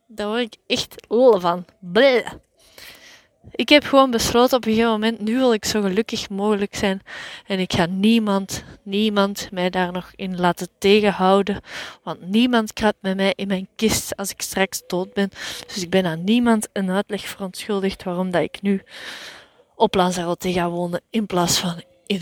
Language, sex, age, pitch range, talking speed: Dutch, female, 20-39, 190-230 Hz, 175 wpm